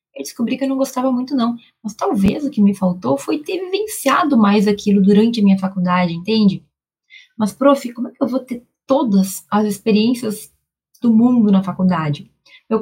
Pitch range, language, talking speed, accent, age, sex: 195-250 Hz, Portuguese, 185 wpm, Brazilian, 10-29, female